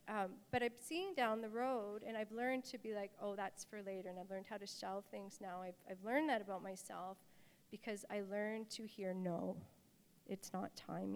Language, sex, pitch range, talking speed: English, female, 195-225 Hz, 215 wpm